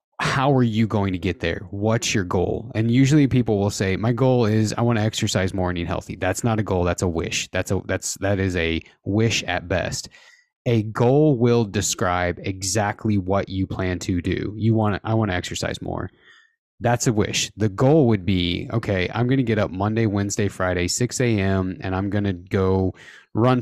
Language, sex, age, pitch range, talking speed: English, male, 20-39, 95-120 Hz, 215 wpm